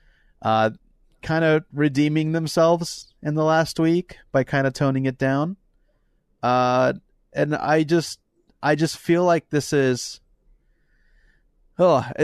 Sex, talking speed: male, 125 wpm